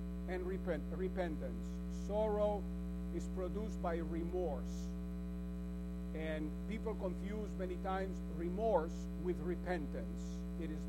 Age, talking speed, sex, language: 50-69, 95 wpm, male, English